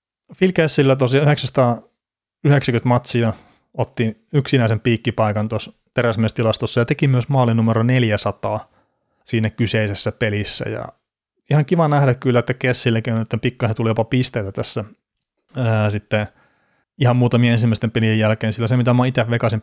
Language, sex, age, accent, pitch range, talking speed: Finnish, male, 30-49, native, 110-125 Hz, 135 wpm